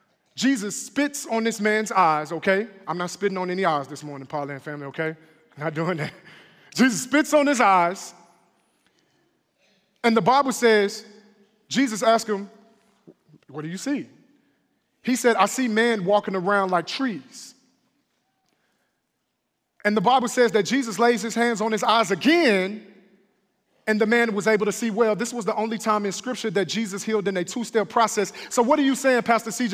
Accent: American